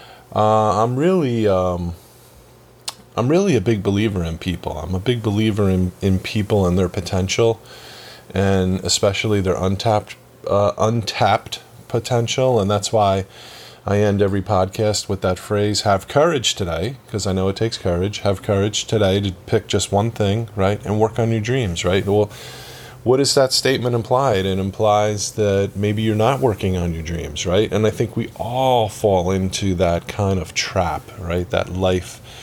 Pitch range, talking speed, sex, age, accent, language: 95-115 Hz, 170 wpm, male, 30-49, American, English